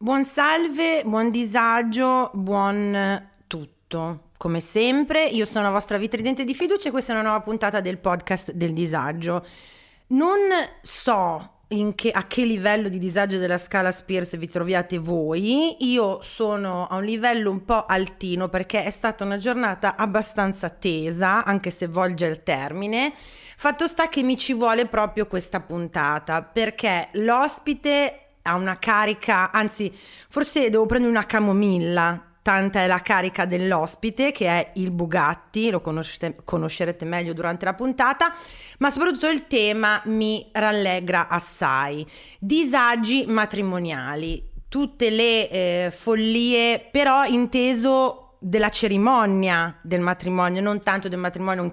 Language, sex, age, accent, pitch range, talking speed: Italian, female, 30-49, native, 180-235 Hz, 135 wpm